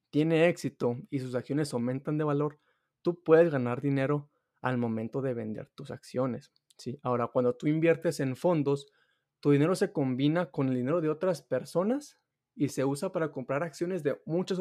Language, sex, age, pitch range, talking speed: Spanish, male, 20-39, 125-155 Hz, 175 wpm